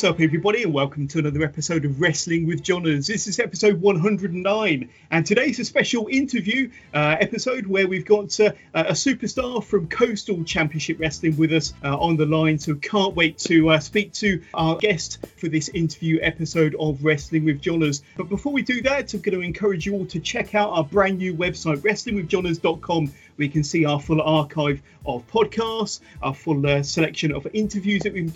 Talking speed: 195 wpm